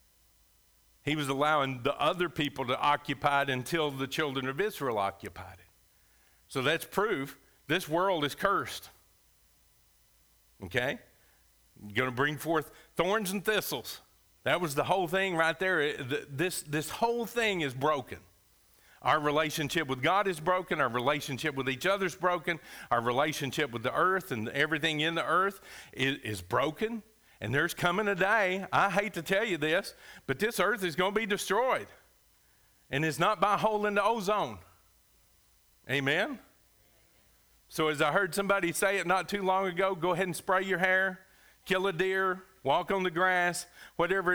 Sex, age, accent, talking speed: male, 50-69, American, 165 wpm